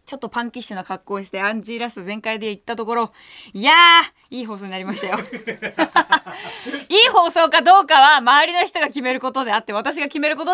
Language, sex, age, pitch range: Japanese, female, 20-39, 215-310 Hz